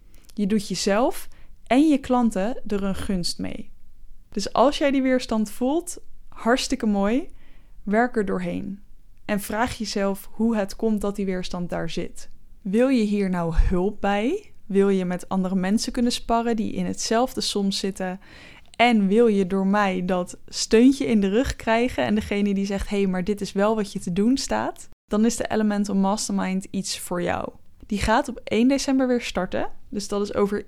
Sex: female